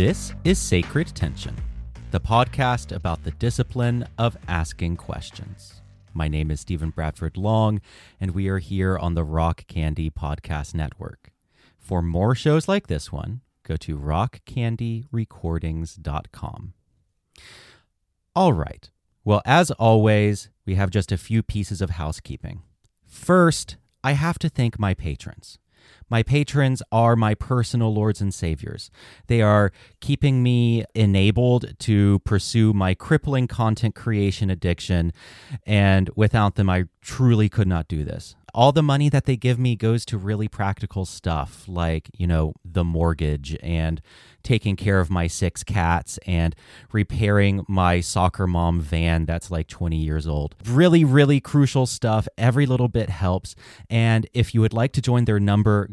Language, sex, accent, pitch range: English, male, American, 90-115 Hz